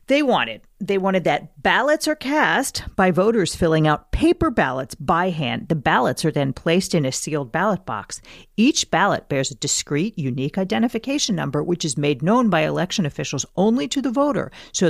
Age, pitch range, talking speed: 40-59, 140-210 Hz, 185 wpm